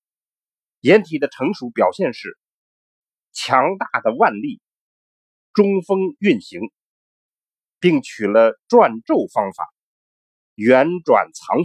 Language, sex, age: Chinese, male, 50-69